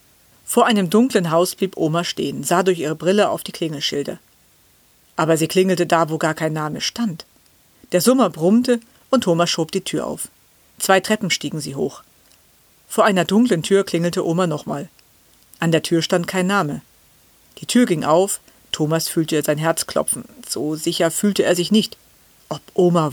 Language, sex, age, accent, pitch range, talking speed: German, female, 50-69, German, 165-195 Hz, 175 wpm